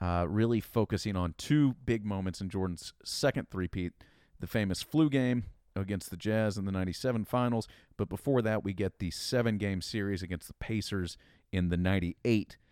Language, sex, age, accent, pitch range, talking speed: English, male, 40-59, American, 90-110 Hz, 170 wpm